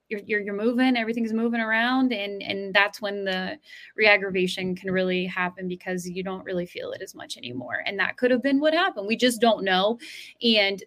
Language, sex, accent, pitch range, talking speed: English, female, American, 195-235 Hz, 205 wpm